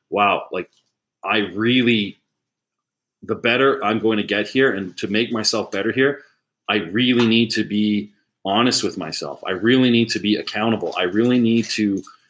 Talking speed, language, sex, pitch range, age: 170 wpm, English, male, 90-115 Hz, 30-49